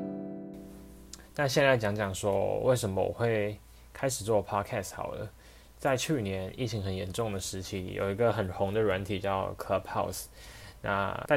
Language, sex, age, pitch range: Chinese, male, 20-39, 95-105 Hz